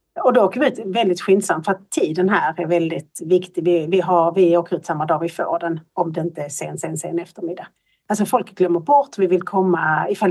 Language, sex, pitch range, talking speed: Swedish, female, 170-205 Hz, 235 wpm